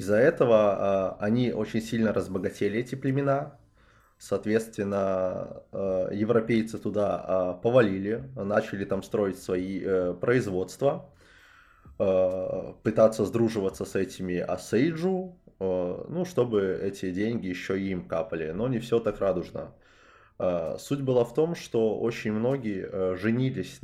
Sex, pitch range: male, 90-115 Hz